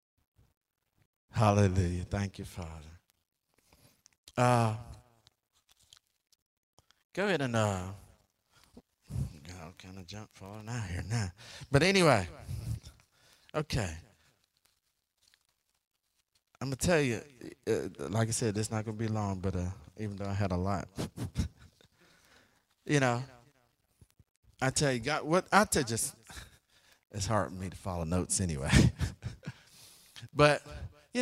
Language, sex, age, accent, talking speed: English, male, 50-69, American, 120 wpm